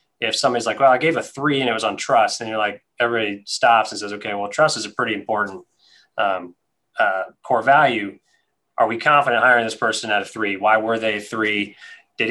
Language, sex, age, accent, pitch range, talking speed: English, male, 20-39, American, 110-140 Hz, 220 wpm